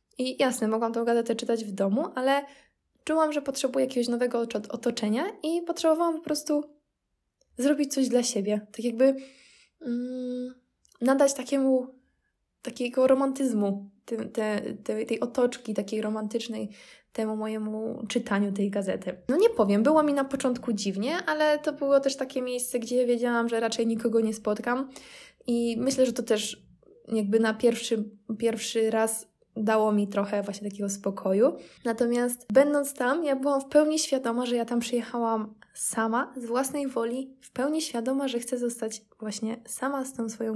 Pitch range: 220-270 Hz